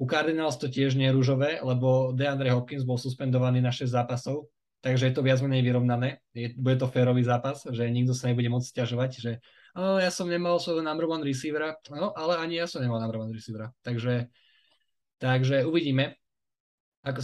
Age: 20-39